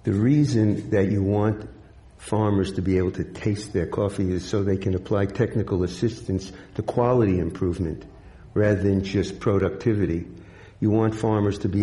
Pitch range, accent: 95-110 Hz, American